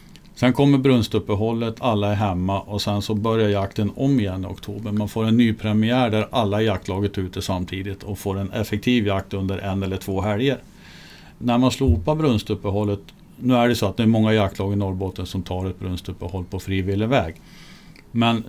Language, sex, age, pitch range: Swedish, male, 50-69, 100-120 Hz